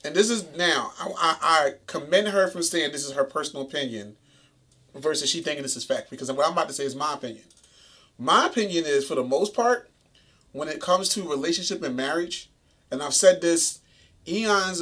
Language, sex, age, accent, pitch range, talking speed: English, male, 30-49, American, 135-180 Hz, 200 wpm